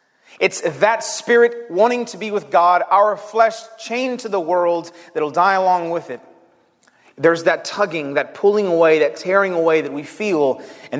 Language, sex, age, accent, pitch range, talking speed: English, male, 30-49, American, 145-195 Hz, 180 wpm